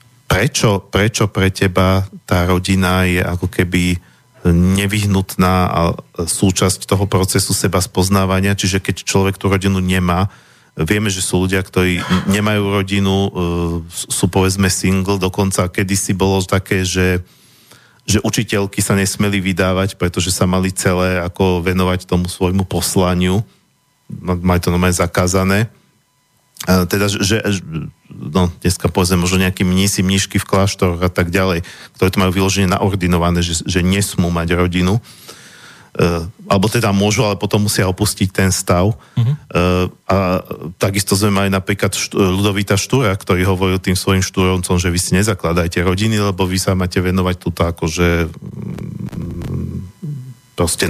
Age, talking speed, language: 40-59, 135 wpm, Slovak